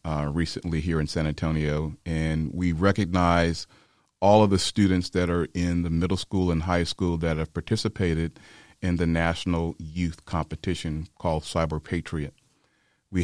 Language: English